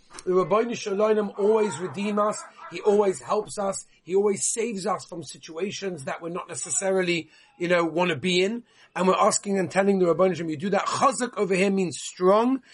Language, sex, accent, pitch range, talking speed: English, male, British, 160-205 Hz, 200 wpm